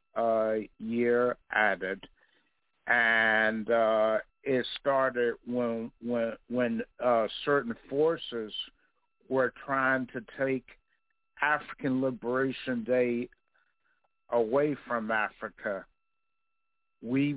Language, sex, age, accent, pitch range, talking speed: English, male, 60-79, American, 115-135 Hz, 85 wpm